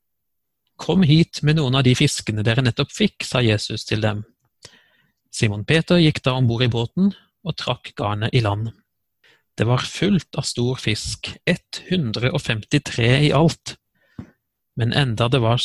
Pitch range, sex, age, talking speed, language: 115-140 Hz, male, 30-49, 150 wpm, English